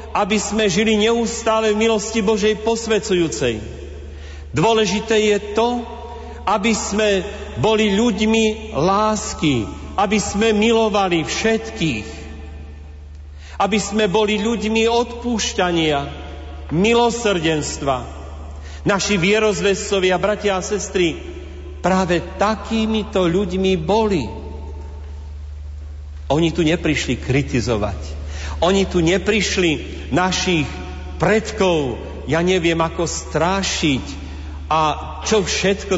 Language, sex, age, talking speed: Slovak, male, 40-59, 85 wpm